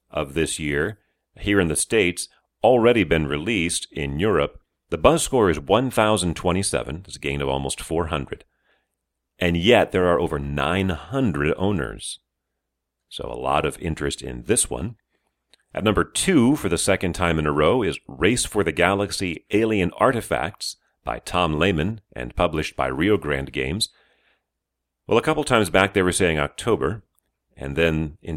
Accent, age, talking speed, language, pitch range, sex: American, 40-59, 160 wpm, English, 70-100 Hz, male